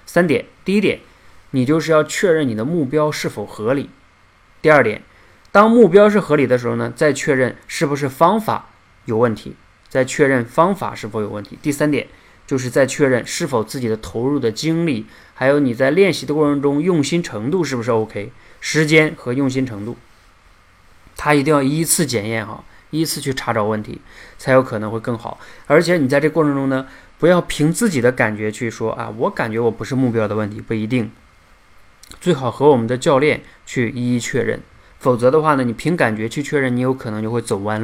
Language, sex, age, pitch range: Chinese, male, 20-39, 110-140 Hz